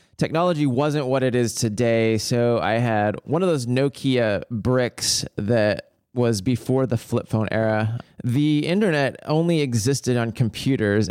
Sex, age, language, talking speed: male, 20-39, English, 145 wpm